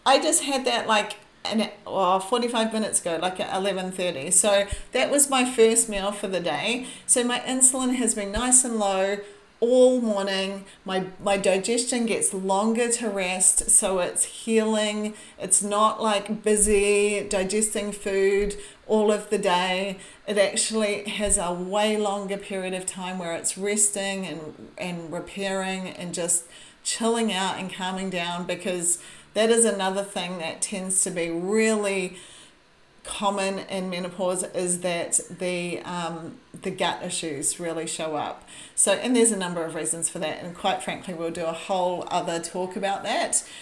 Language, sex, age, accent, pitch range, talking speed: English, female, 40-59, Australian, 180-215 Hz, 160 wpm